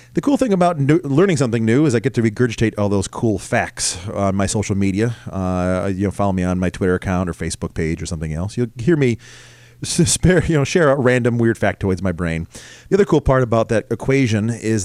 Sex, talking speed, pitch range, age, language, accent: male, 230 wpm, 105-135 Hz, 30-49, English, American